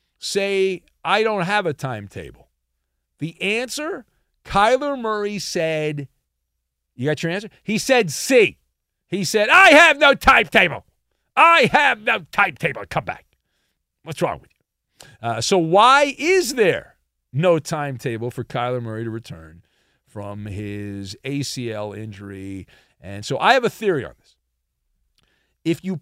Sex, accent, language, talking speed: male, American, English, 140 wpm